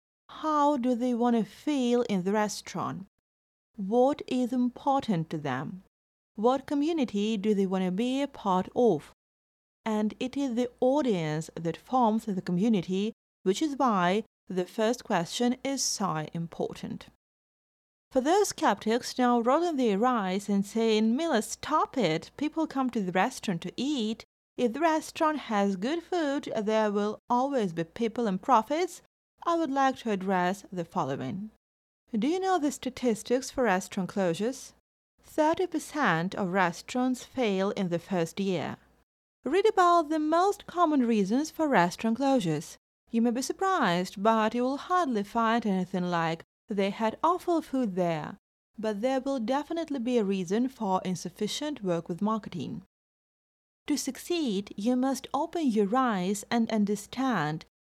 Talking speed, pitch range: 150 wpm, 195-270 Hz